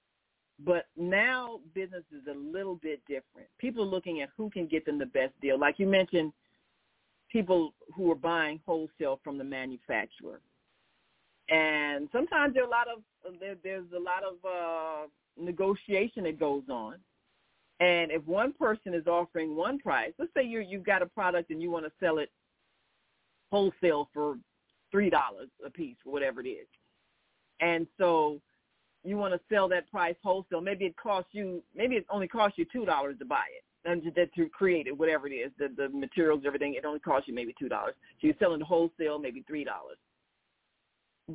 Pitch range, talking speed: 160-205 Hz, 165 wpm